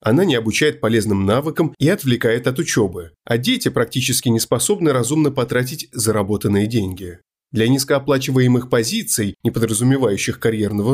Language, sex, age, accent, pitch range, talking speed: Russian, male, 30-49, native, 110-145 Hz, 130 wpm